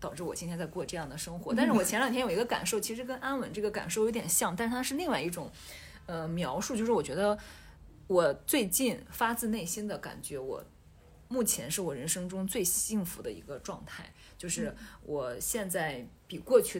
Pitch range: 150-205 Hz